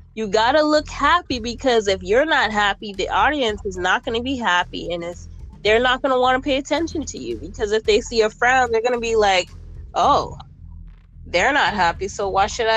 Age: 10-29